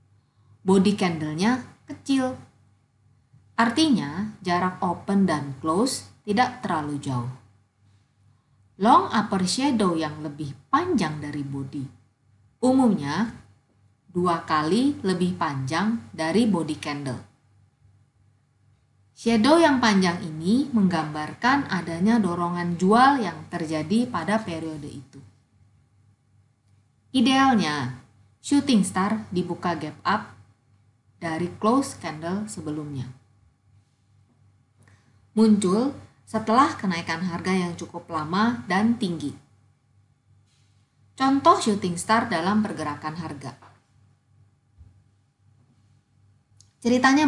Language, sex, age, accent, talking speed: Indonesian, female, 30-49, native, 85 wpm